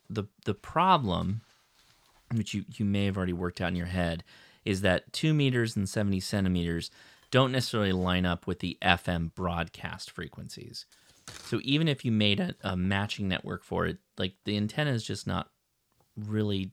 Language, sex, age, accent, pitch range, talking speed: English, male, 30-49, American, 90-125 Hz, 170 wpm